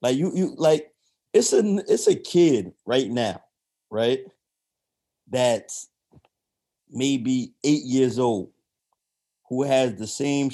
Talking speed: 120 wpm